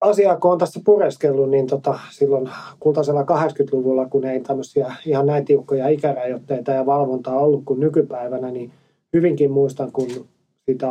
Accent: native